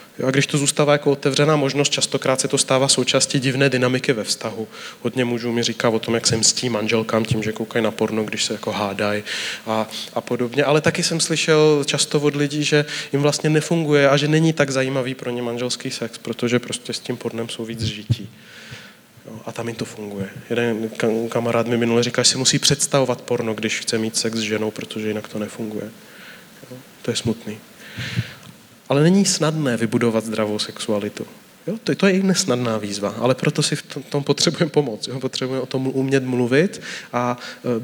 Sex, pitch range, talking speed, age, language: male, 115-145 Hz, 200 wpm, 20-39, Czech